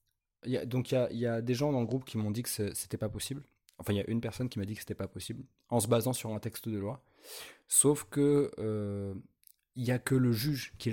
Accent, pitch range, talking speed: French, 105-130 Hz, 265 wpm